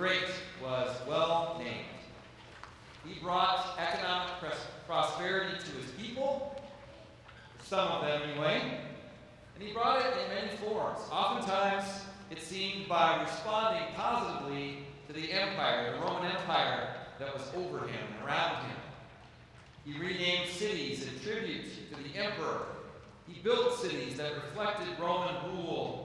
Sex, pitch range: male, 140-195 Hz